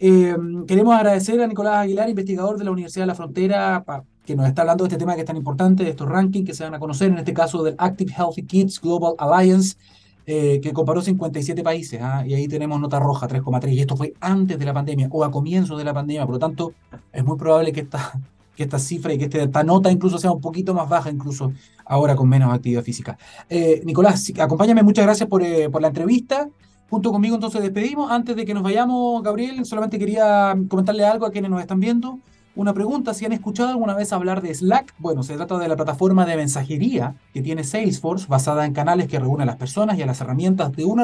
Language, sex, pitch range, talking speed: Spanish, male, 150-205 Hz, 235 wpm